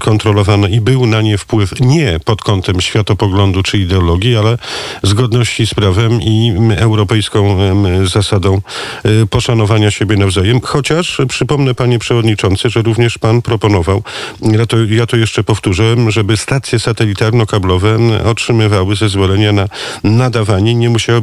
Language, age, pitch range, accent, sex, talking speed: Polish, 50-69, 105-120 Hz, native, male, 130 wpm